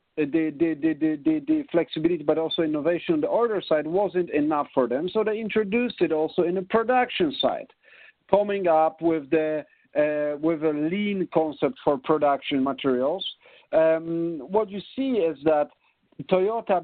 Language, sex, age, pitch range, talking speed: English, male, 50-69, 155-215 Hz, 165 wpm